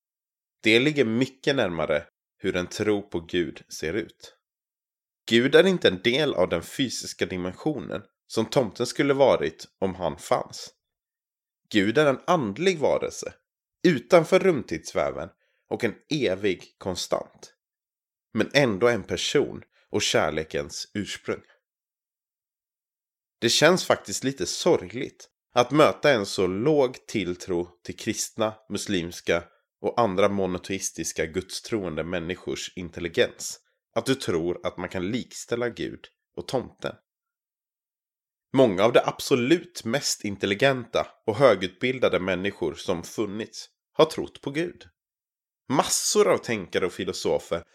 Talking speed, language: 120 wpm, Swedish